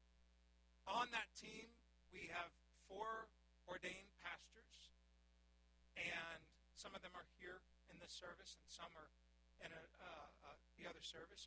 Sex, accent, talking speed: male, American, 135 wpm